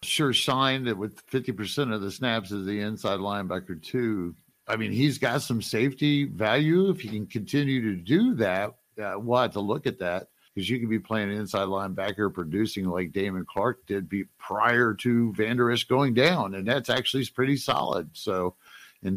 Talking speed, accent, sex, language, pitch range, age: 180 wpm, American, male, English, 100-125 Hz, 50-69